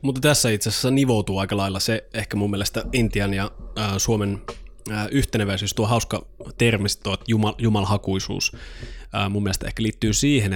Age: 20-39